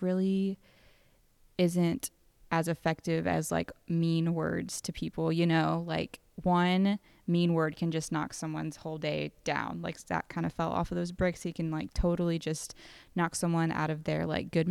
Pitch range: 160-175 Hz